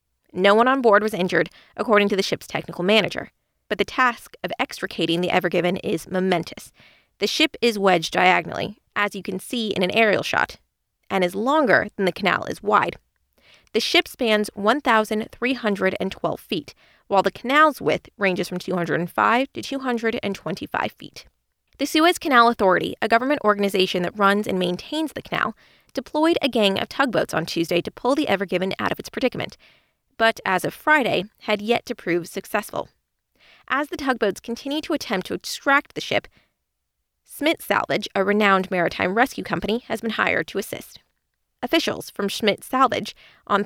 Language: English